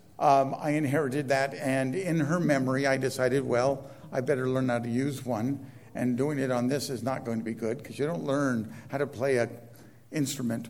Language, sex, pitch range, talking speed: English, male, 115-140 Hz, 215 wpm